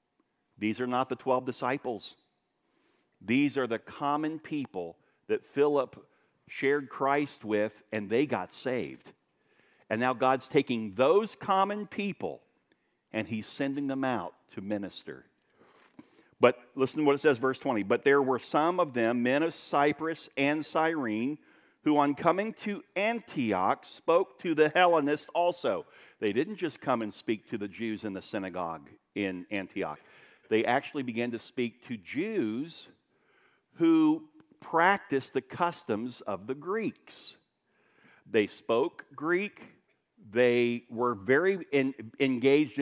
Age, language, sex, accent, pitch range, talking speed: 50-69, English, male, American, 125-175 Hz, 135 wpm